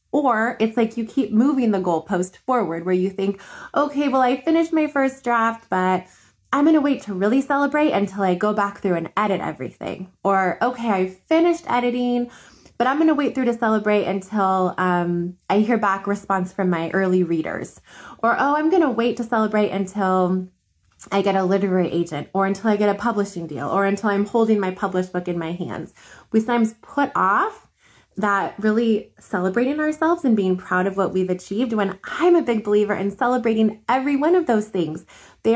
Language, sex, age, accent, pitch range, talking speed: English, female, 20-39, American, 190-245 Hz, 195 wpm